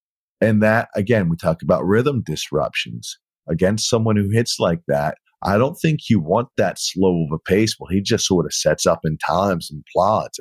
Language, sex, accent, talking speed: English, male, American, 200 wpm